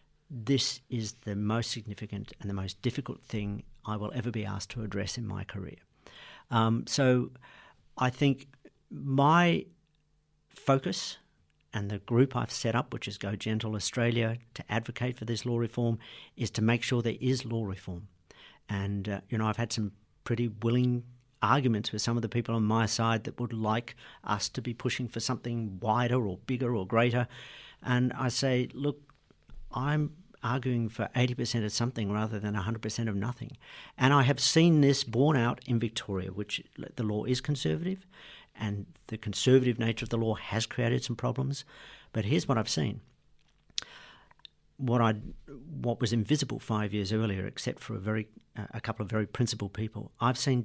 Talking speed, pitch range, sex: 175 wpm, 110-130 Hz, male